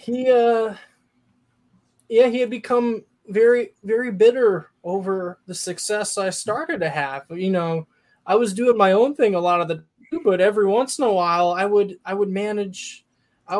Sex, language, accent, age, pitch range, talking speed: male, English, American, 20-39, 175-210 Hz, 175 wpm